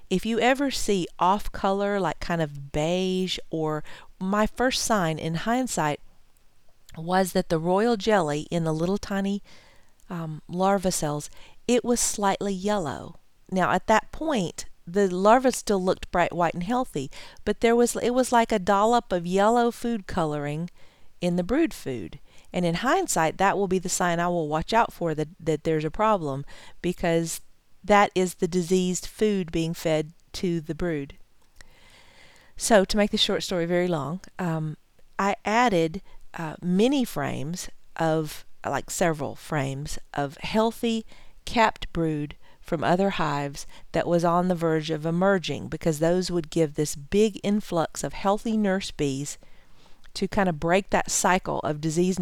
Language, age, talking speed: English, 40-59, 160 wpm